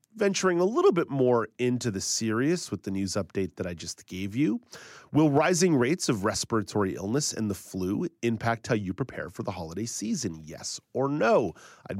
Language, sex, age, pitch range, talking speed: English, male, 30-49, 100-125 Hz, 190 wpm